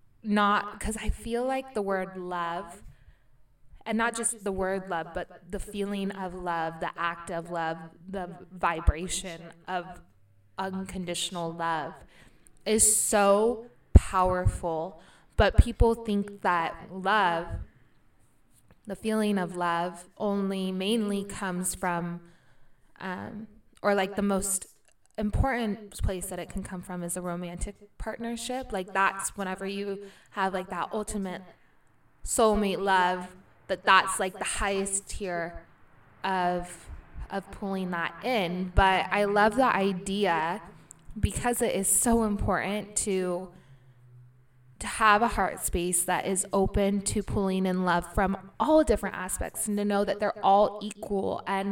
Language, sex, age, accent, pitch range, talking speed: English, female, 20-39, American, 175-205 Hz, 135 wpm